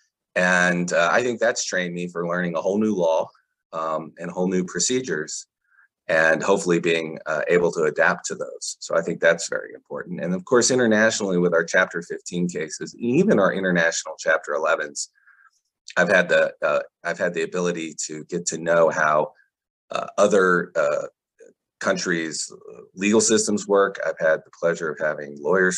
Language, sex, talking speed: English, male, 165 wpm